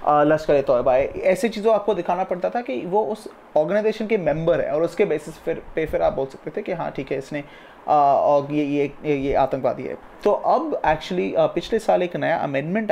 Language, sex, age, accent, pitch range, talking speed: Hindi, male, 20-39, native, 150-190 Hz, 230 wpm